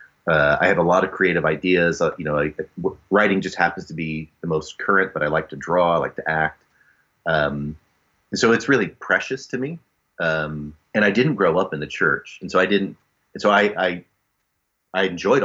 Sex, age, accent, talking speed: male, 30-49, American, 220 wpm